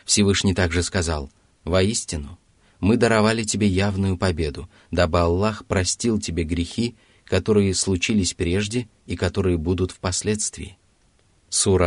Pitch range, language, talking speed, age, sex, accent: 85-105 Hz, Russian, 110 wpm, 30-49, male, native